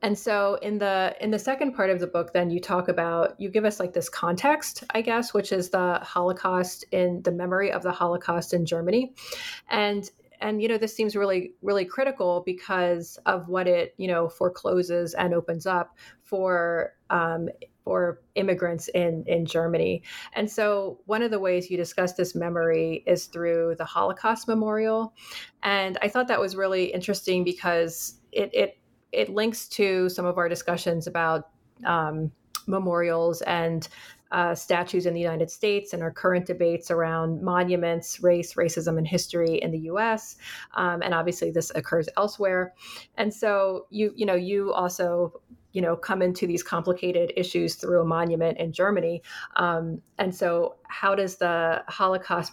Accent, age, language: American, 30-49, English